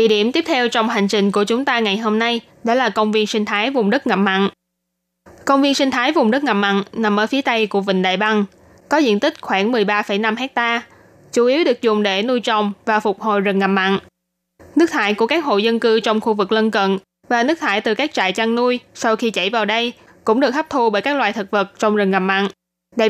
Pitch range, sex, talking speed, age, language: 200-245 Hz, female, 250 wpm, 20-39, Vietnamese